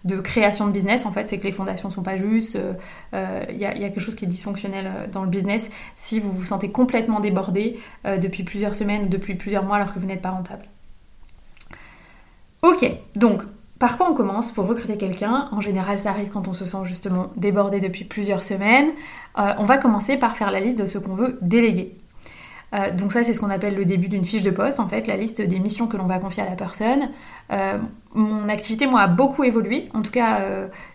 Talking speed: 235 wpm